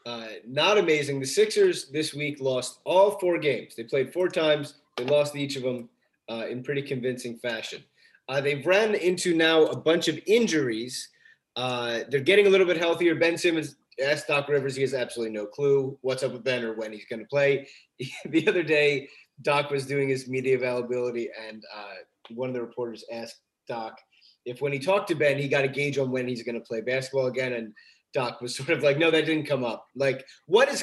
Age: 30-49